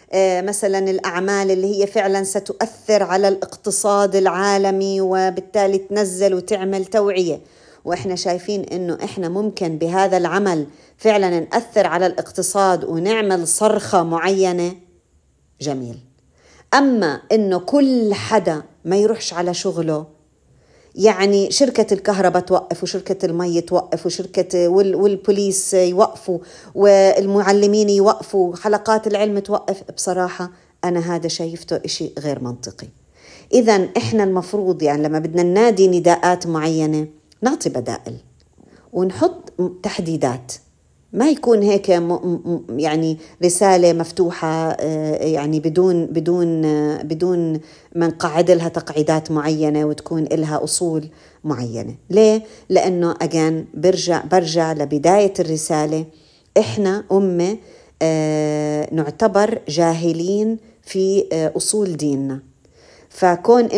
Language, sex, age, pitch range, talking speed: Arabic, female, 40-59, 165-200 Hz, 100 wpm